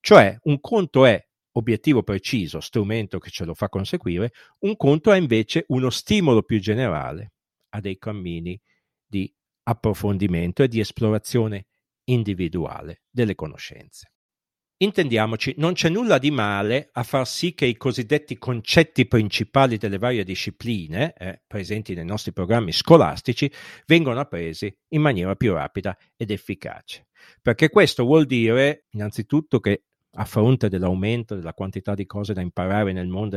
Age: 50-69